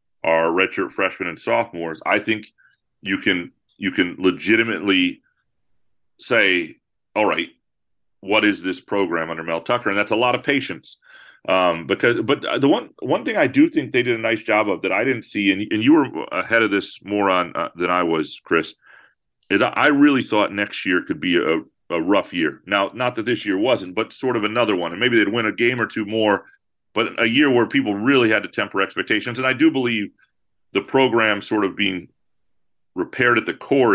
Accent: American